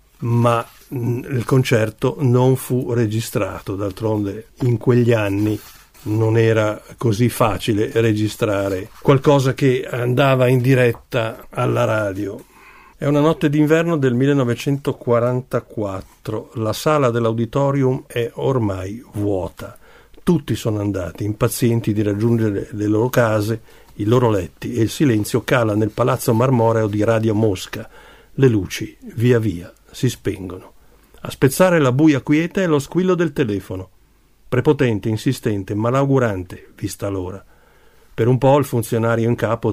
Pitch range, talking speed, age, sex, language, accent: 105-130 Hz, 125 wpm, 50-69, male, Italian, native